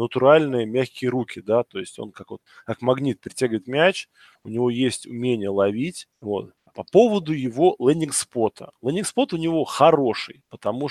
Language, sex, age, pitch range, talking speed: Russian, male, 20-39, 110-145 Hz, 155 wpm